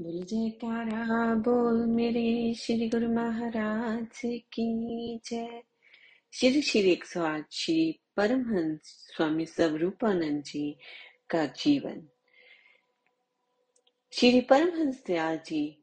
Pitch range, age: 155-240 Hz, 30-49